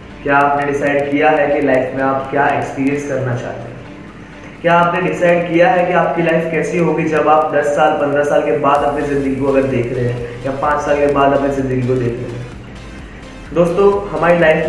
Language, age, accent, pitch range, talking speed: Hindi, 20-39, native, 135-165 Hz, 215 wpm